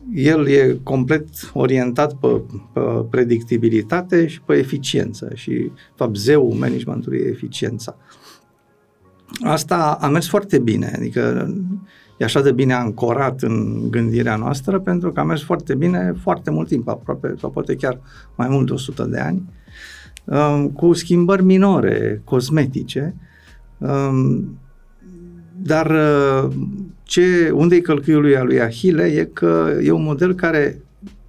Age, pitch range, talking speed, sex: 50-69, 110-160 Hz, 130 wpm, male